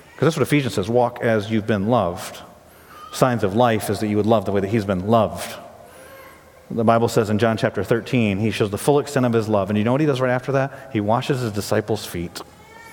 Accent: American